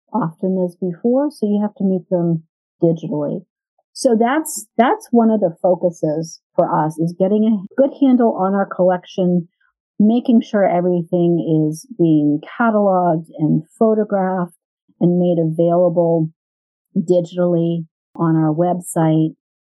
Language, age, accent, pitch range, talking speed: English, 50-69, American, 165-200 Hz, 130 wpm